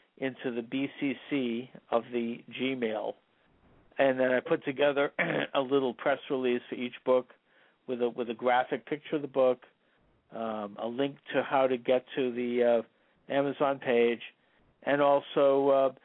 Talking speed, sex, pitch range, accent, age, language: 155 wpm, male, 120-145 Hz, American, 50-69, English